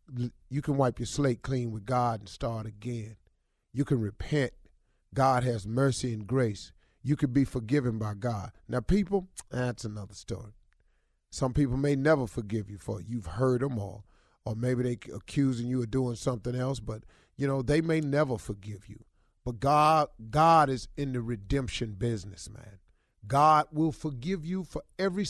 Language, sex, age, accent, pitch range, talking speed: English, male, 30-49, American, 110-155 Hz, 175 wpm